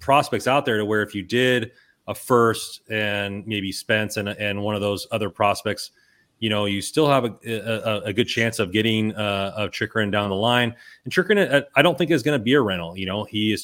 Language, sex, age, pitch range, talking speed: English, male, 30-49, 105-120 Hz, 235 wpm